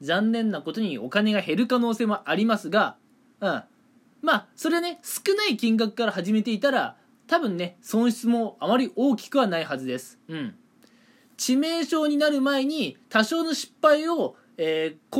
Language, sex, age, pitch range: Japanese, male, 20-39, 200-260 Hz